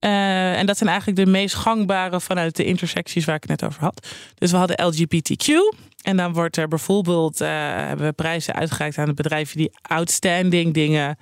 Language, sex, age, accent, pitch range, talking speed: Dutch, male, 20-39, Dutch, 165-195 Hz, 195 wpm